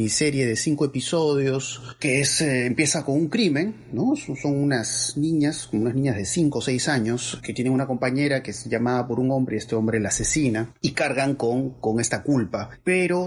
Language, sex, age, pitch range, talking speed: Spanish, male, 30-49, 115-145 Hz, 200 wpm